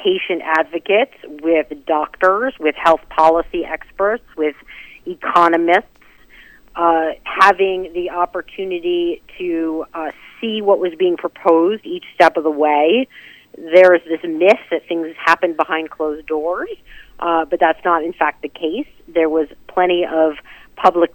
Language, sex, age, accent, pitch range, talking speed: English, female, 40-59, American, 160-195 Hz, 140 wpm